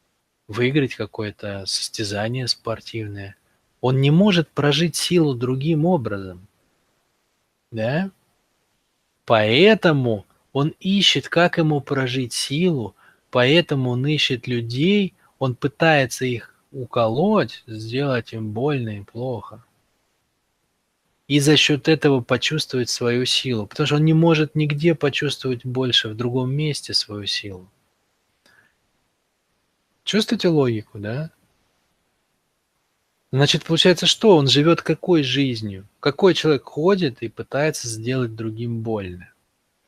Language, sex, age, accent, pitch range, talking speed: Russian, male, 20-39, native, 115-155 Hz, 105 wpm